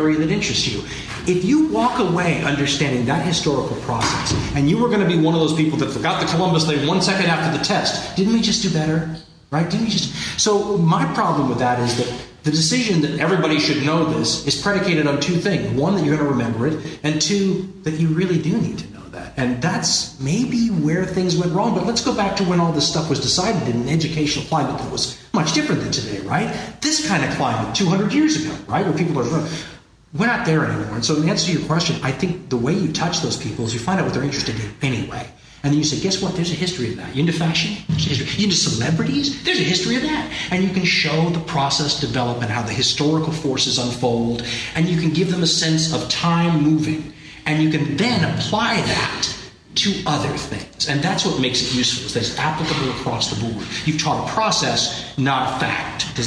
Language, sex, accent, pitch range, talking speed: English, male, American, 140-180 Hz, 235 wpm